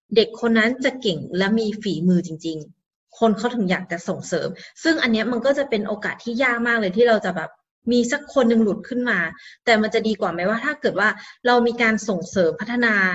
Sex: female